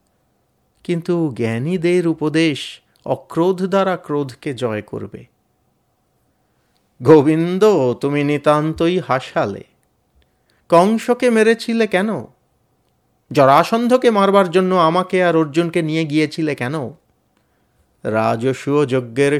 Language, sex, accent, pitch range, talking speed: Bengali, male, native, 130-175 Hz, 75 wpm